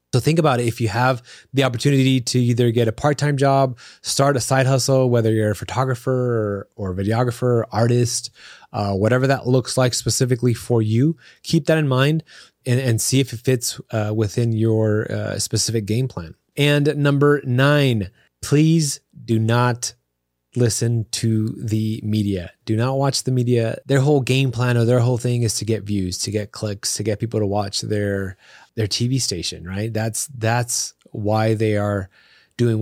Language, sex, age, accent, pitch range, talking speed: English, male, 20-39, American, 100-125 Hz, 185 wpm